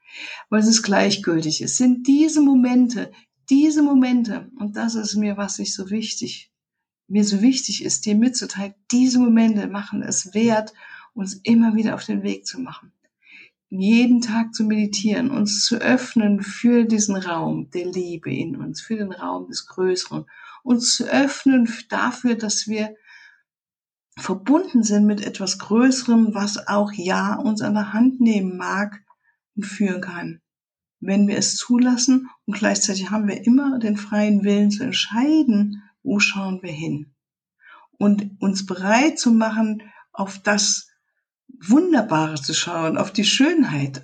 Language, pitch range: German, 195-245 Hz